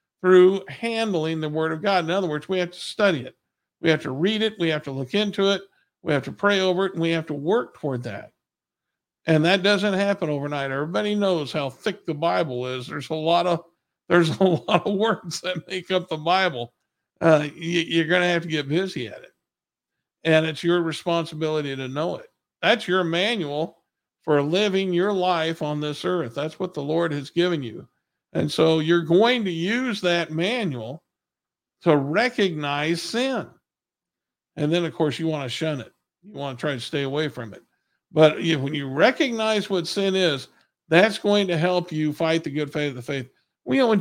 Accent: American